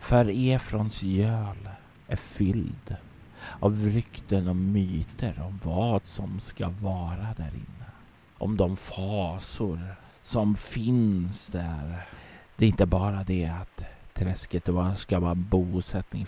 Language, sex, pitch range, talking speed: Swedish, male, 90-105 Hz, 120 wpm